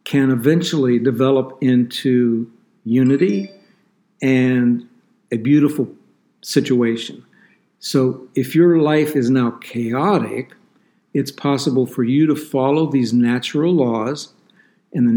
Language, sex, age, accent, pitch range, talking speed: English, male, 60-79, American, 120-155 Hz, 105 wpm